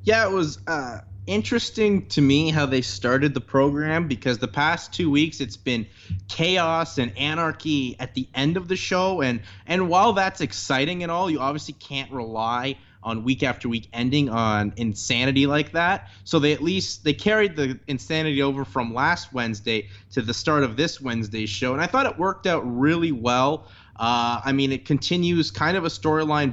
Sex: male